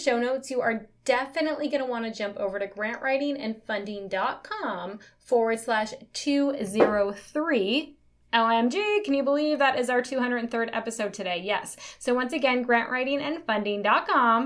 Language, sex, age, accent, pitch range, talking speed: English, female, 20-39, American, 210-275 Hz, 130 wpm